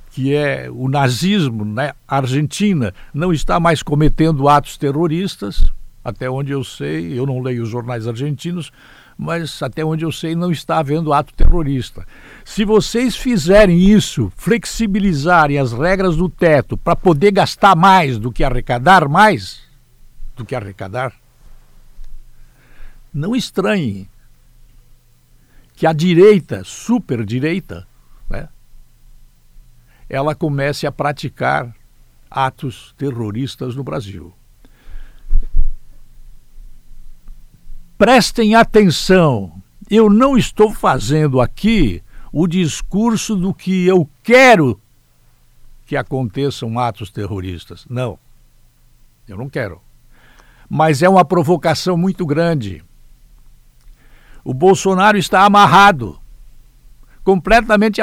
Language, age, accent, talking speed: Portuguese, 60-79, Brazilian, 105 wpm